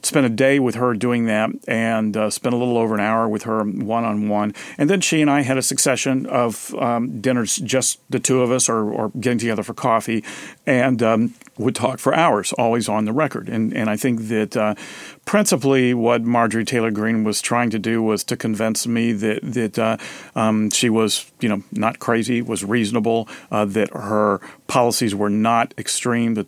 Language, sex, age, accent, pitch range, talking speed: English, male, 40-59, American, 105-125 Hz, 200 wpm